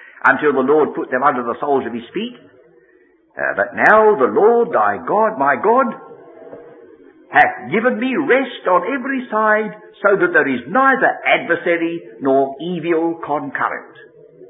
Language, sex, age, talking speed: English, male, 60-79, 150 wpm